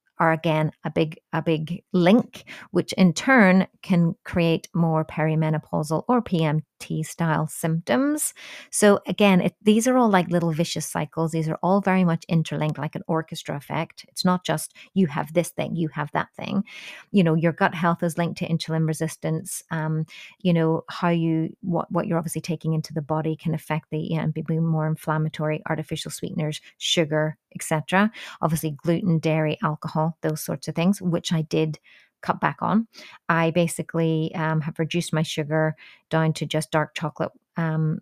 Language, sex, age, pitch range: English, female, 30-49, 155-180 Hz